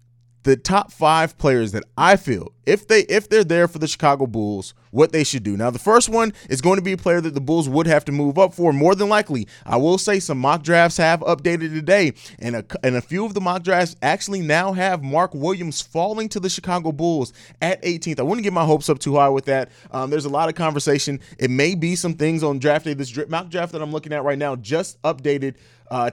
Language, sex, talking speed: English, male, 255 wpm